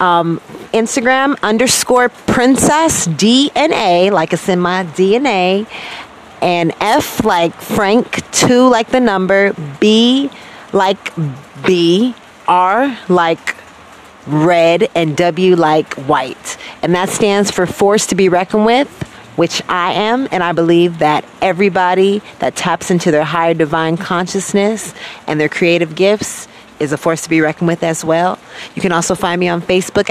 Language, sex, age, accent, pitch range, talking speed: English, female, 30-49, American, 170-210 Hz, 145 wpm